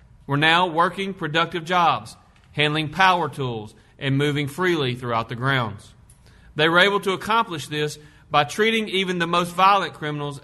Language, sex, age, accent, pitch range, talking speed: English, male, 40-59, American, 125-170 Hz, 155 wpm